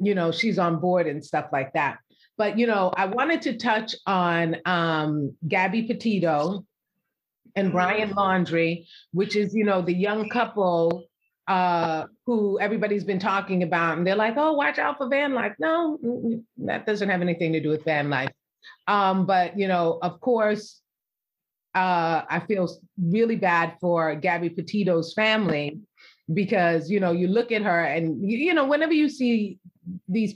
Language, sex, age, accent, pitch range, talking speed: English, female, 30-49, American, 170-210 Hz, 170 wpm